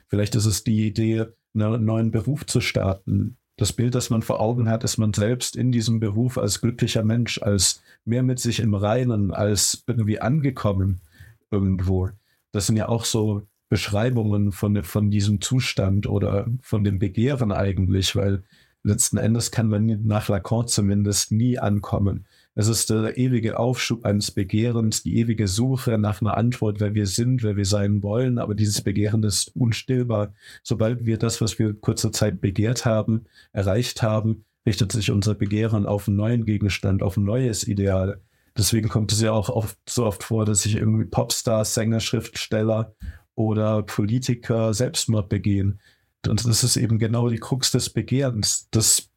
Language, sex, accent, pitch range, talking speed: German, male, German, 105-120 Hz, 170 wpm